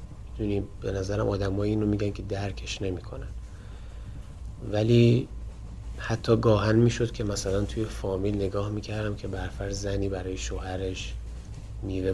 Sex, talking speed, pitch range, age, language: male, 120 wpm, 95-105 Hz, 30-49, Persian